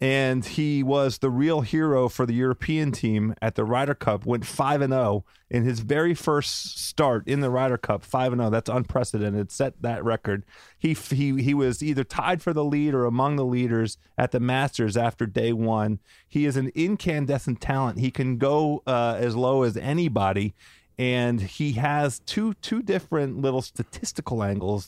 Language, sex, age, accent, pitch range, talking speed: English, male, 30-49, American, 115-150 Hz, 180 wpm